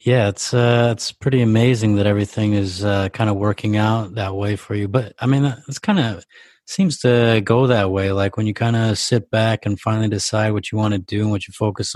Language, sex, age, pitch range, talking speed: English, male, 20-39, 100-115 Hz, 240 wpm